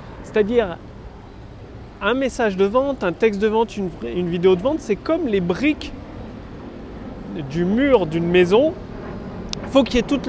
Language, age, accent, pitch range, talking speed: French, 30-49, French, 175-240 Hz, 165 wpm